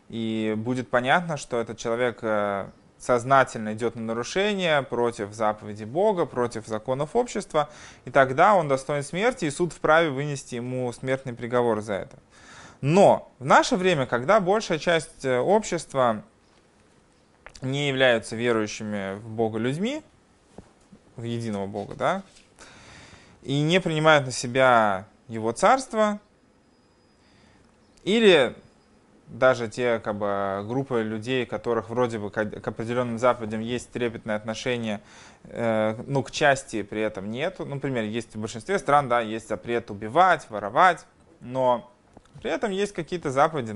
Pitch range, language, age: 110-150 Hz, Russian, 20-39